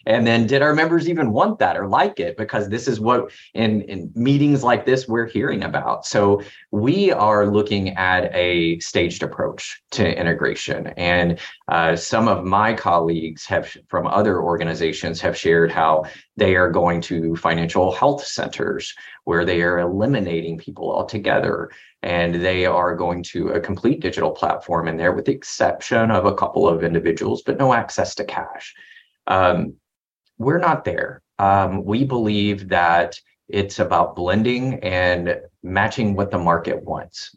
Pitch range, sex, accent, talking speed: 90-125 Hz, male, American, 160 wpm